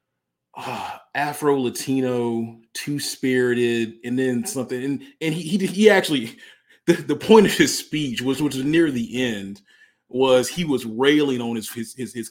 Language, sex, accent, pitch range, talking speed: English, male, American, 115-135 Hz, 175 wpm